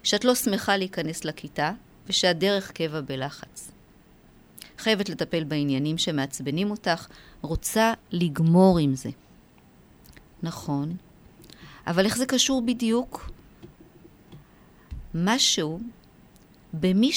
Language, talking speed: Hebrew, 85 wpm